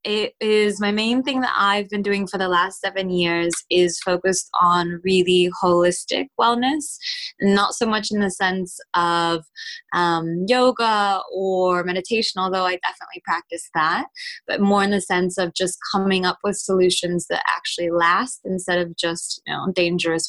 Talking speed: 160 wpm